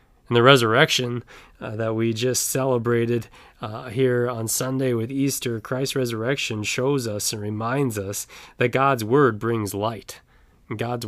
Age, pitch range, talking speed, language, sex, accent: 20-39, 105-120 Hz, 140 wpm, English, male, American